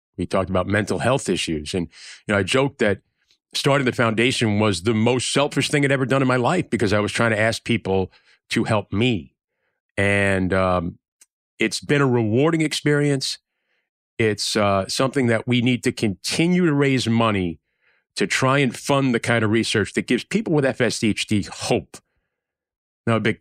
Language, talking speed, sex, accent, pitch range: English, 185 wpm, male, American, 105-140 Hz